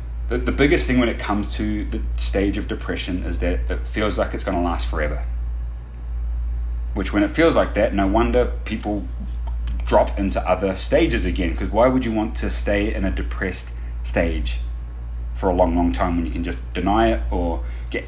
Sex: male